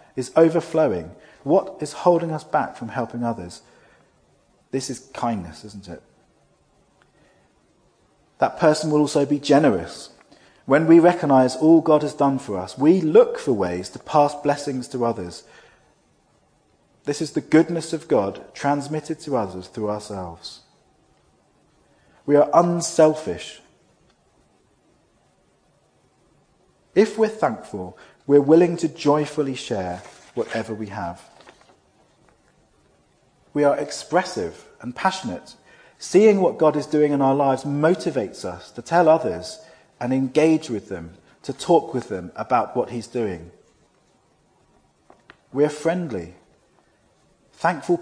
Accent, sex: British, male